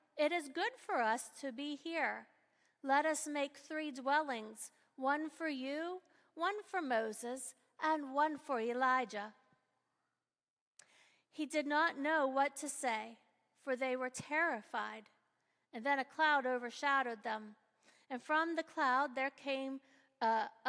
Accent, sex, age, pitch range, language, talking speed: American, female, 50-69, 230-295 Hz, English, 135 wpm